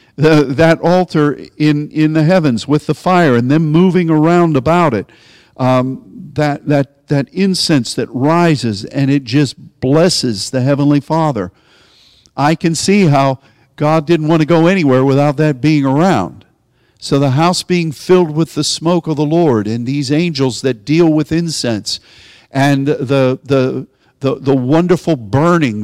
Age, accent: 50-69, American